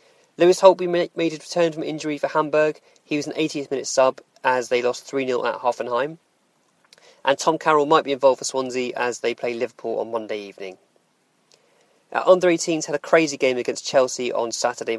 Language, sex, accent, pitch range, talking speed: English, male, British, 130-170 Hz, 185 wpm